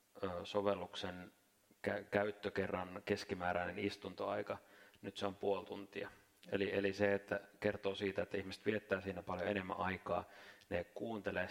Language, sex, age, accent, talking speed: Finnish, male, 30-49, native, 125 wpm